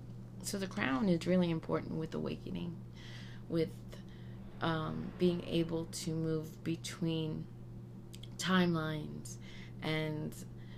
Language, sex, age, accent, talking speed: English, female, 30-49, American, 95 wpm